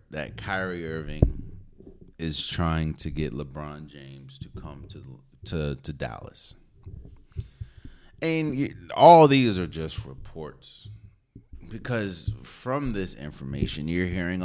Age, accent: 30-49, American